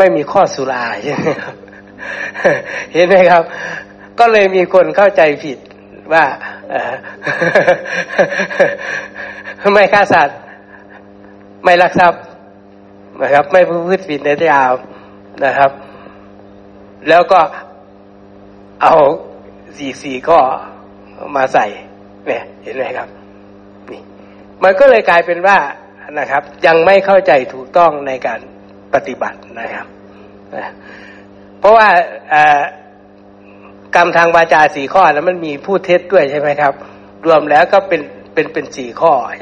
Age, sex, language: 60-79, male, Thai